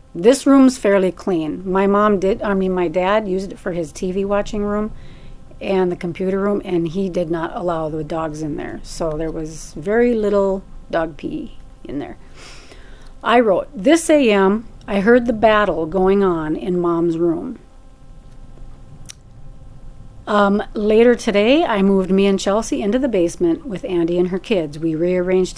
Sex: female